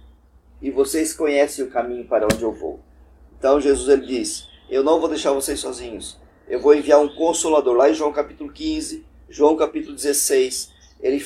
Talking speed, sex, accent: 170 wpm, male, Brazilian